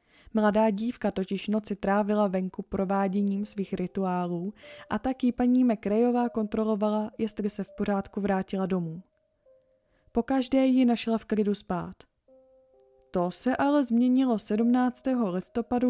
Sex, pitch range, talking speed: female, 195-235 Hz, 125 wpm